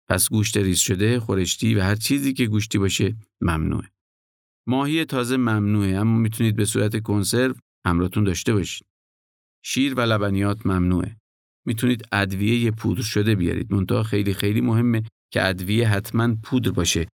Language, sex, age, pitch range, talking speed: Persian, male, 50-69, 95-120 Hz, 145 wpm